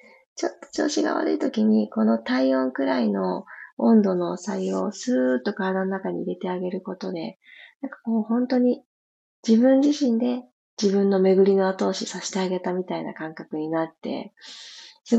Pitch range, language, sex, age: 180-255 Hz, Japanese, female, 20-39